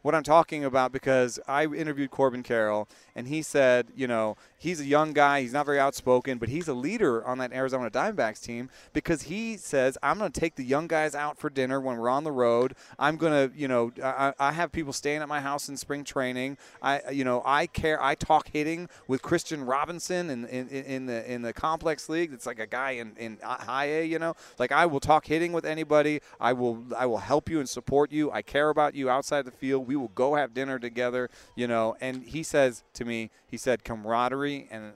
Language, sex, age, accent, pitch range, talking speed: English, male, 30-49, American, 120-150 Hz, 230 wpm